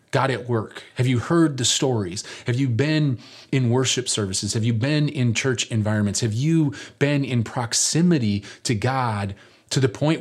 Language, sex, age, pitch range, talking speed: English, male, 30-49, 105-130 Hz, 175 wpm